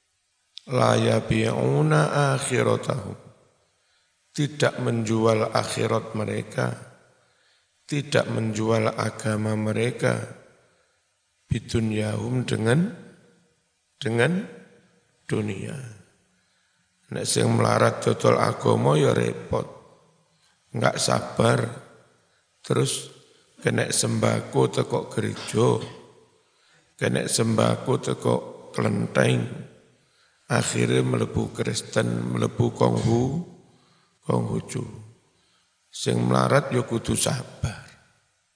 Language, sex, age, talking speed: Indonesian, male, 50-69, 70 wpm